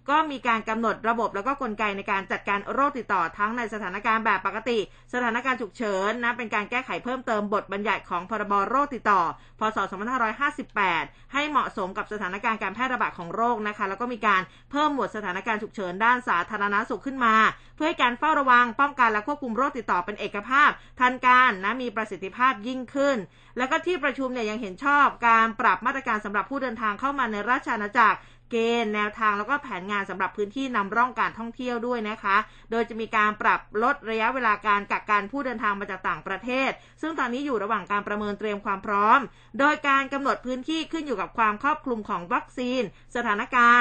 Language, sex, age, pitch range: Thai, female, 20-39, 210-260 Hz